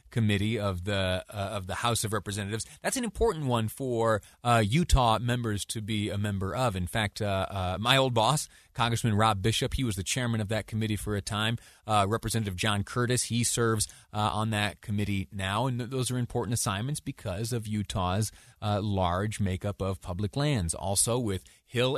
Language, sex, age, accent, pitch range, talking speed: English, male, 30-49, American, 100-120 Hz, 190 wpm